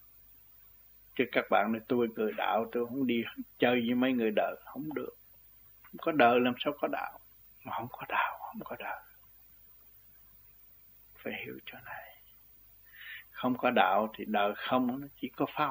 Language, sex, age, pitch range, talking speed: Vietnamese, male, 60-79, 105-135 Hz, 170 wpm